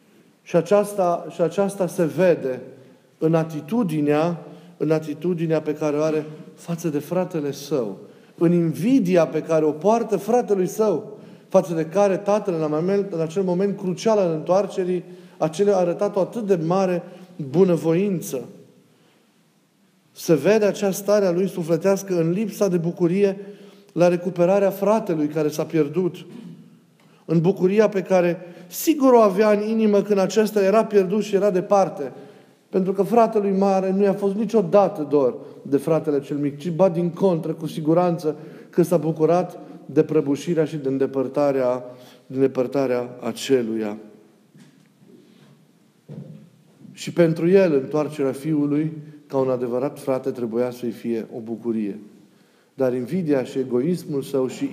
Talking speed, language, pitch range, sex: 140 wpm, Romanian, 150-195 Hz, male